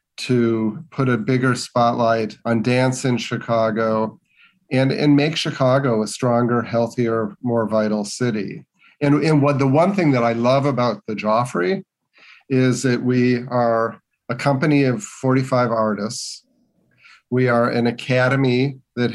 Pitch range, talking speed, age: 115-130 Hz, 140 wpm, 40-59